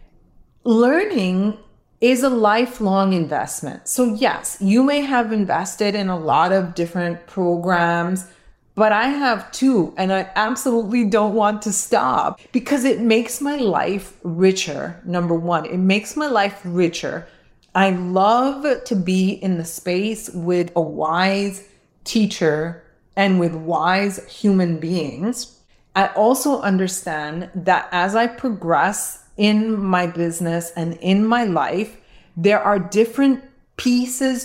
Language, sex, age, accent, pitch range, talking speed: English, female, 30-49, American, 180-230 Hz, 130 wpm